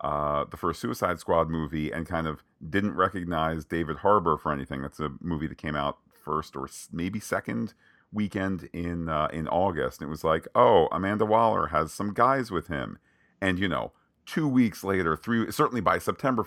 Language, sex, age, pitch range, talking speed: English, male, 40-59, 80-95 Hz, 190 wpm